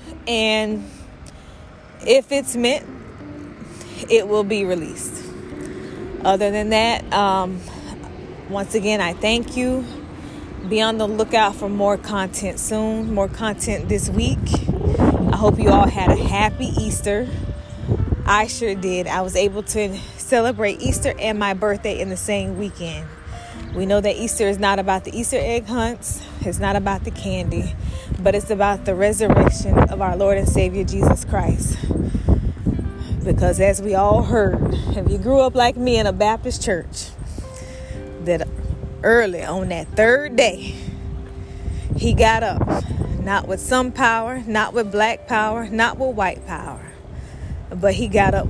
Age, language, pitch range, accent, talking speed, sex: 20-39, English, 165-225 Hz, American, 150 wpm, female